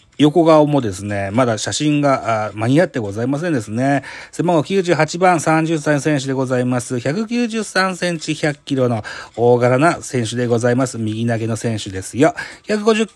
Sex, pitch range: male, 115-170 Hz